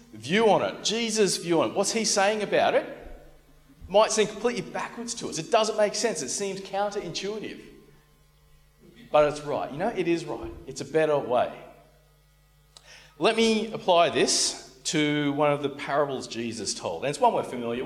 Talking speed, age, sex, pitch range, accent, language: 180 wpm, 40-59, male, 145-190 Hz, Australian, English